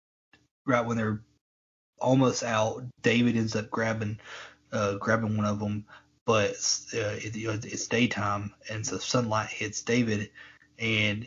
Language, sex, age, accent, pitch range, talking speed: English, male, 30-49, American, 105-120 Hz, 145 wpm